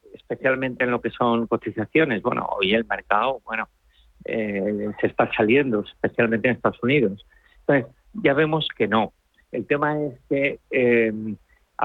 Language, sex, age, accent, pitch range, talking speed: Spanish, male, 50-69, Spanish, 110-140 Hz, 145 wpm